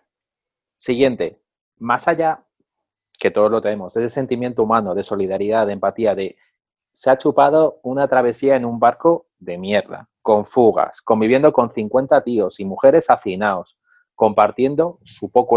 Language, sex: Spanish, male